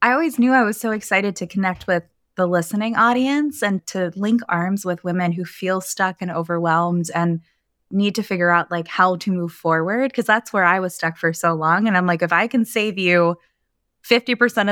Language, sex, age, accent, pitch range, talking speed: English, female, 20-39, American, 175-225 Hz, 210 wpm